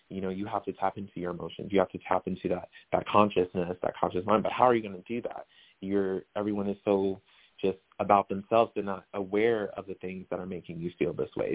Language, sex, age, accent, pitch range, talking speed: English, male, 20-39, American, 95-105 Hz, 250 wpm